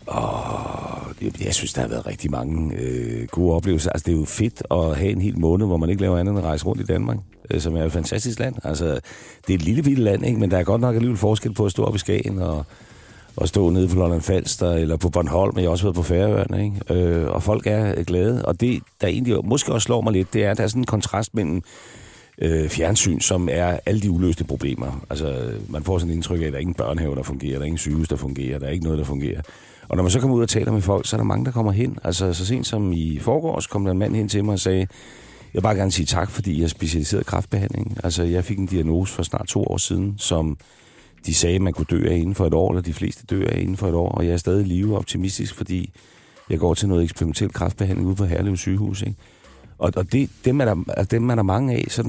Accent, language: native, Danish